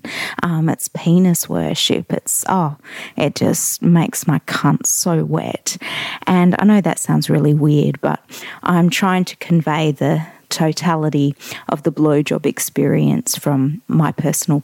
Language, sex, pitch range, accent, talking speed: English, female, 150-180 Hz, Australian, 140 wpm